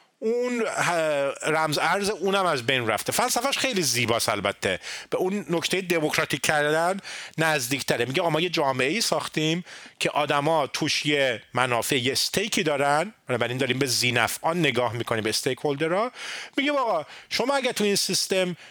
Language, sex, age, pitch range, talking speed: Persian, male, 40-59, 140-190 Hz, 150 wpm